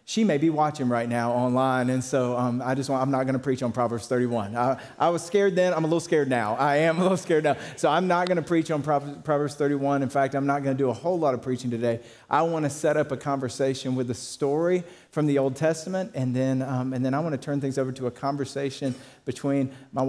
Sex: male